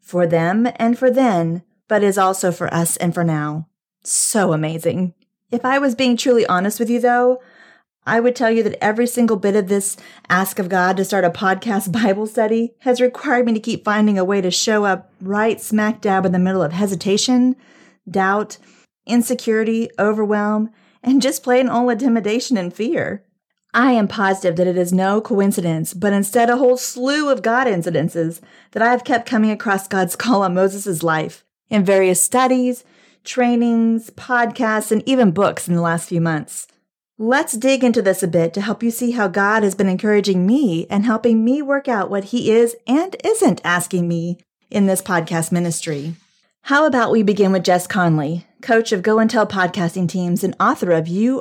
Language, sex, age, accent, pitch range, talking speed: English, female, 40-59, American, 185-235 Hz, 190 wpm